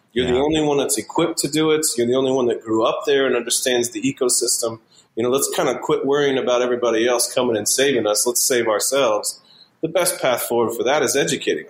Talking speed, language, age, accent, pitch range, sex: 235 wpm, English, 40-59, American, 105-135 Hz, male